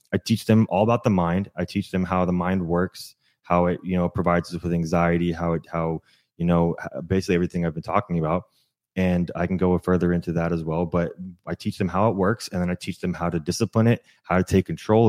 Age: 20-39